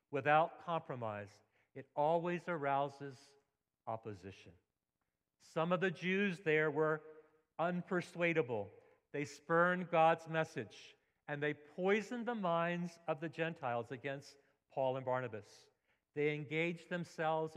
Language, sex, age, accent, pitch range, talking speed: English, male, 50-69, American, 125-170 Hz, 110 wpm